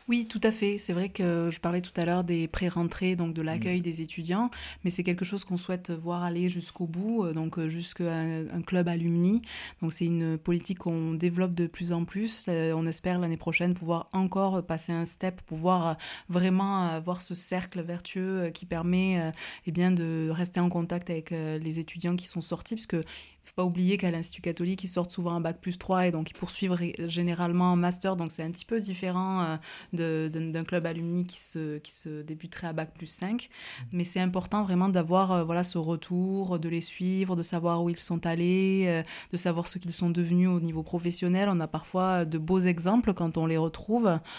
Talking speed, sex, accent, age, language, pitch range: 205 wpm, female, French, 20-39, French, 165-185 Hz